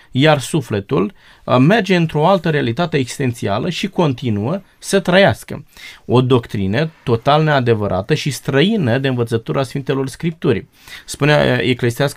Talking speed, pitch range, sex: 115 wpm, 120-170 Hz, male